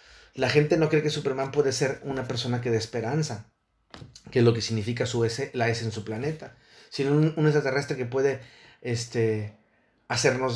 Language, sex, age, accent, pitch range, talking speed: Spanish, male, 40-59, Mexican, 125-155 Hz, 190 wpm